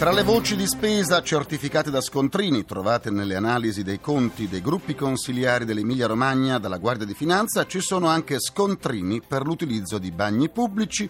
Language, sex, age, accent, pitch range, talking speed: Italian, male, 40-59, native, 120-175 Hz, 170 wpm